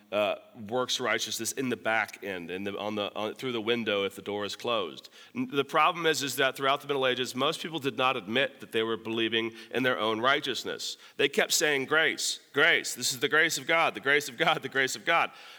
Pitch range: 110-140 Hz